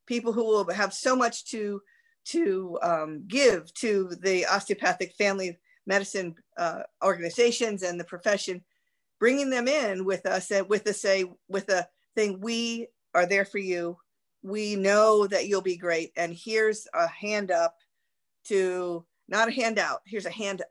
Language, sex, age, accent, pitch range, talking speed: English, female, 50-69, American, 185-230 Hz, 155 wpm